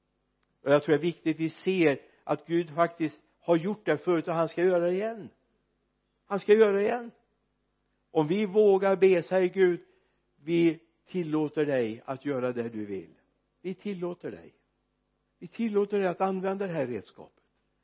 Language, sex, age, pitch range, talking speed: Swedish, male, 60-79, 155-200 Hz, 175 wpm